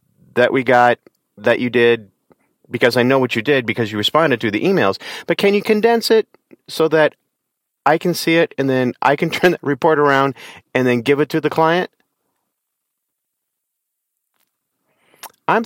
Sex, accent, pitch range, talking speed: male, American, 105-155 Hz, 175 wpm